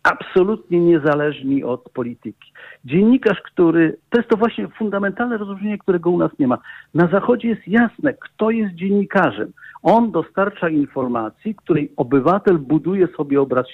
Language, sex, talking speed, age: Polish, male, 140 wpm, 50-69